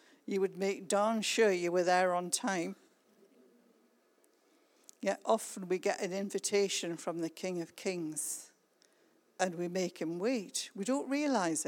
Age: 50-69